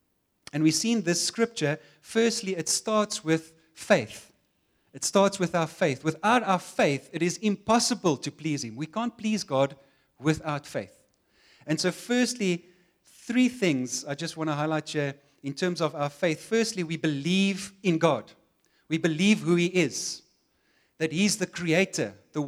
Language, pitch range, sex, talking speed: English, 145-180 Hz, male, 165 wpm